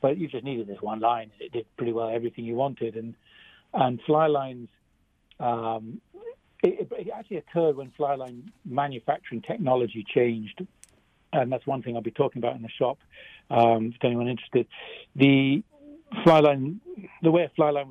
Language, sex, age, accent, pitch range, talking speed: English, male, 60-79, British, 115-150 Hz, 175 wpm